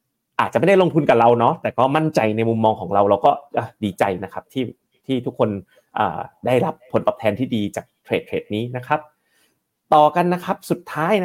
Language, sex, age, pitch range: Thai, male, 30-49, 115-160 Hz